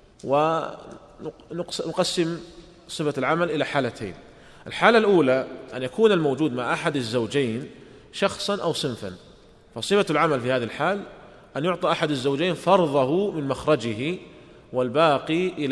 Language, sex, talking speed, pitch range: Arabic, male, 110 wpm, 130-175 Hz